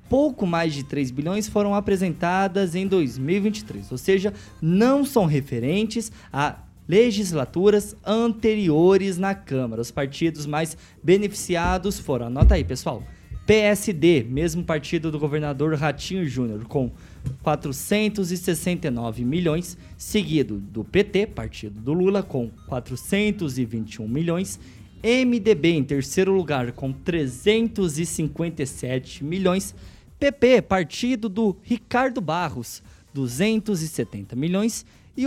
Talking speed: 105 wpm